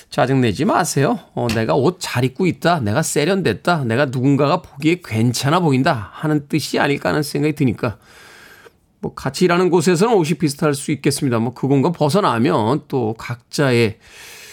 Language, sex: Korean, male